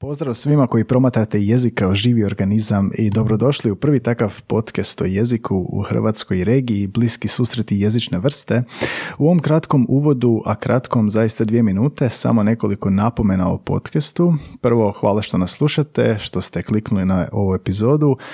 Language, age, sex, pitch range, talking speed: Croatian, 30-49, male, 105-125 Hz, 160 wpm